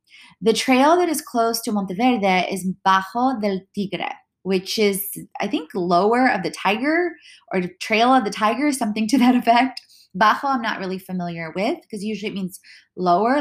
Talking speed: 180 wpm